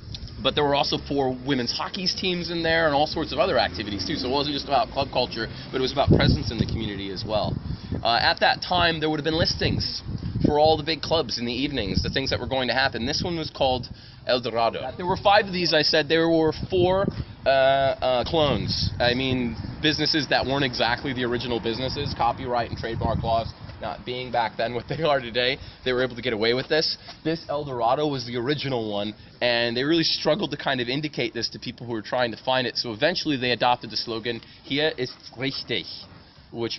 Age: 20-39